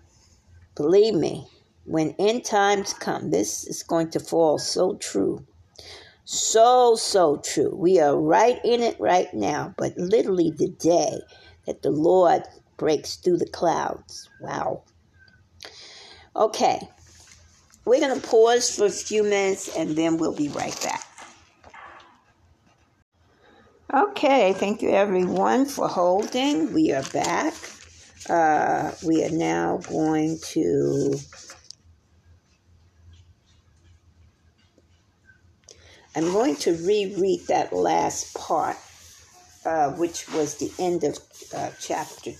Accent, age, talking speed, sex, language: American, 50-69, 115 wpm, female, English